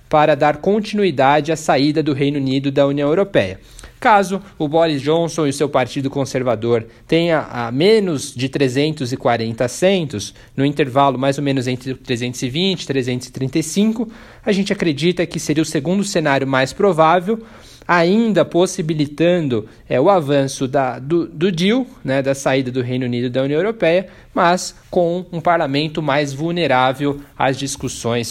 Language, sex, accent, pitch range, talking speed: Portuguese, male, Brazilian, 135-175 Hz, 150 wpm